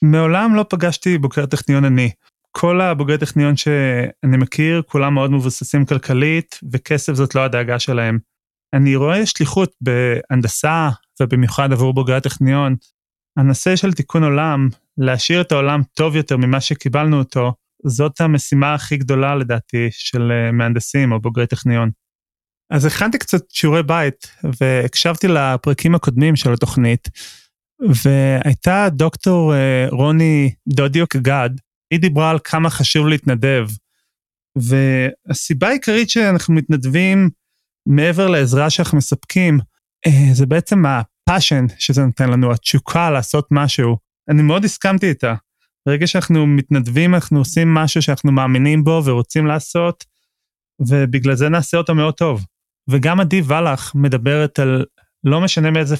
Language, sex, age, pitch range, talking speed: Hebrew, male, 30-49, 130-160 Hz, 125 wpm